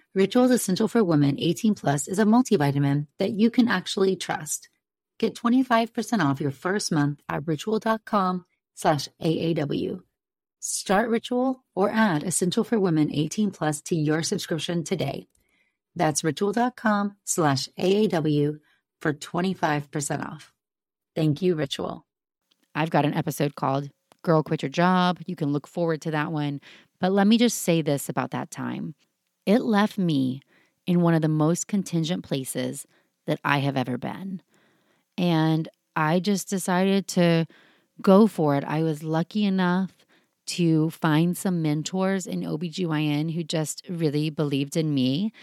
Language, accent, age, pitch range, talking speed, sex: English, American, 30-49, 150-195 Hz, 145 wpm, female